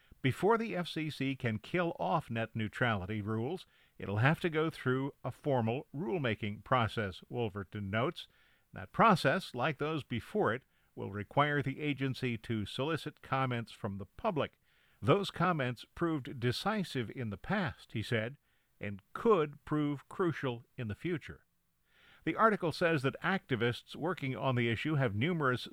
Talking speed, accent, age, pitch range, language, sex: 145 wpm, American, 50-69, 115-160 Hz, English, male